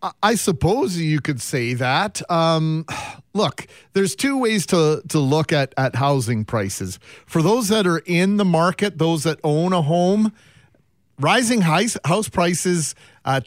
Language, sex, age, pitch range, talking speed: English, male, 40-59, 130-175 Hz, 150 wpm